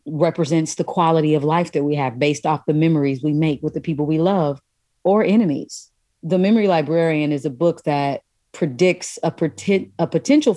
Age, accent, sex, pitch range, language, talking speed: 30-49, American, female, 150-180 Hz, English, 185 wpm